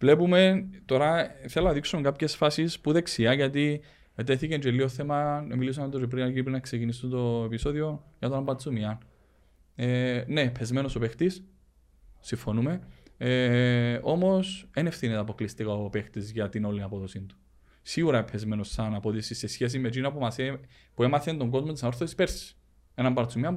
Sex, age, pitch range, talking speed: male, 20-39, 120-165 Hz, 150 wpm